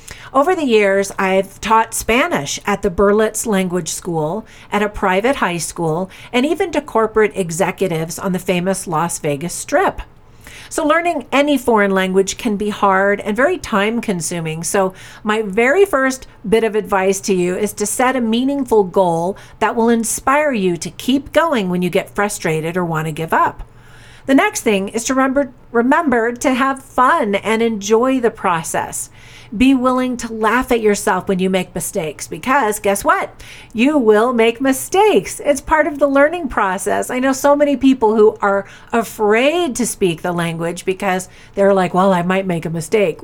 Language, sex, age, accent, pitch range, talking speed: English, female, 40-59, American, 190-240 Hz, 180 wpm